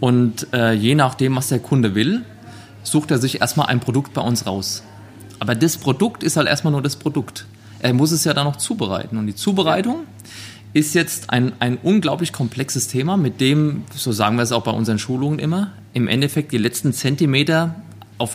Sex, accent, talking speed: male, German, 195 wpm